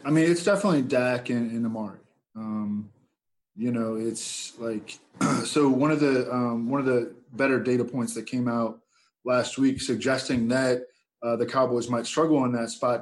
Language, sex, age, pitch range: English, male, 20-39, 115-135 Hz